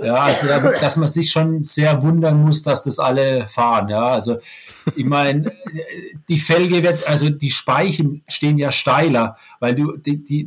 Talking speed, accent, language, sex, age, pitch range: 170 wpm, German, German, male, 40-59, 135-180 Hz